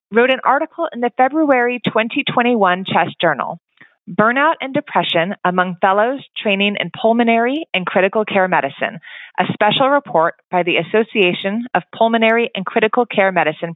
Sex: female